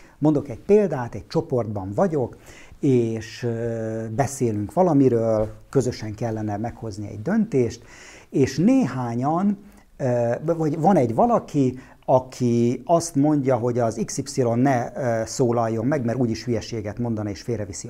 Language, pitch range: Hungarian, 110-150 Hz